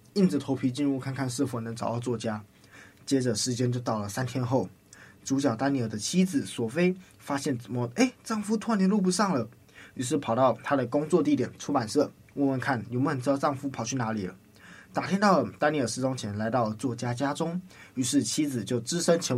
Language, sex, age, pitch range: Chinese, male, 20-39, 115-145 Hz